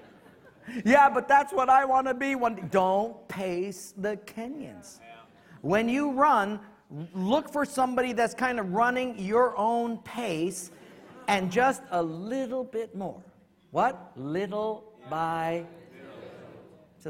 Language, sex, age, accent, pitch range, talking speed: English, male, 50-69, American, 185-245 Hz, 125 wpm